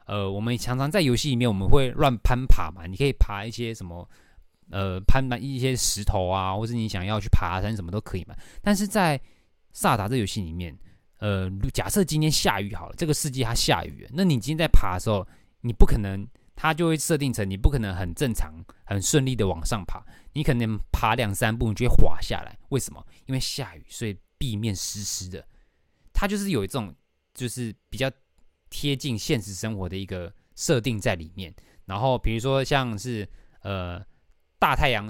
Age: 20-39